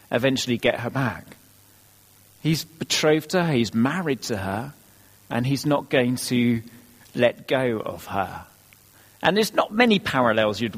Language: English